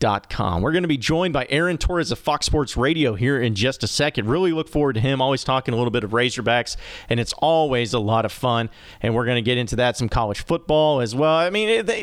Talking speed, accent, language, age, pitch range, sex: 260 wpm, American, English, 40-59, 115-160 Hz, male